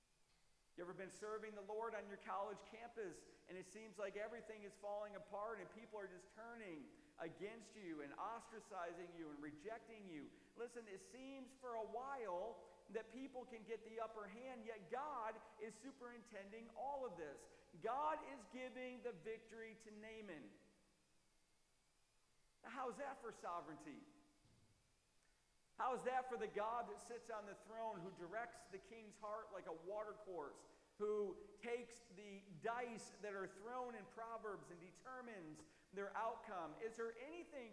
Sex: male